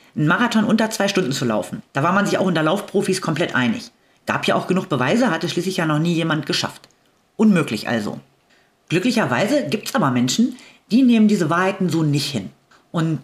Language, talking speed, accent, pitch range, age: German, 195 wpm, German, 150-225 Hz, 40-59